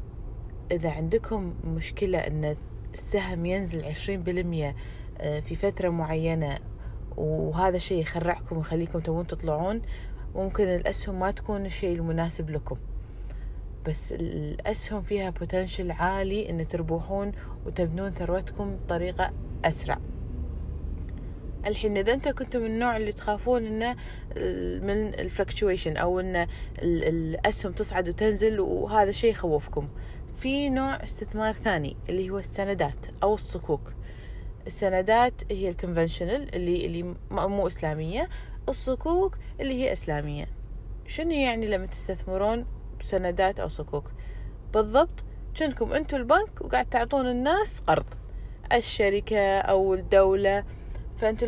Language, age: Arabic, 20-39